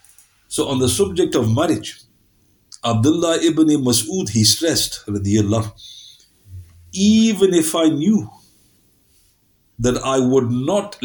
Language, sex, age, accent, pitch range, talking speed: English, male, 50-69, Indian, 105-135 Hz, 110 wpm